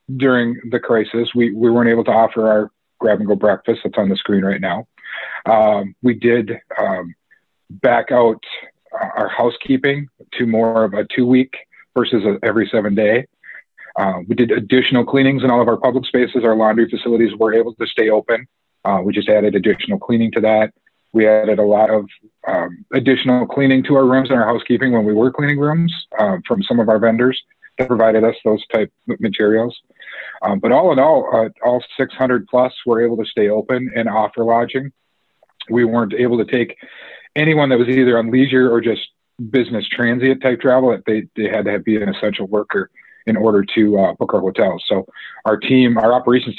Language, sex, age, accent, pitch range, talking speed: English, male, 40-59, American, 110-125 Hz, 195 wpm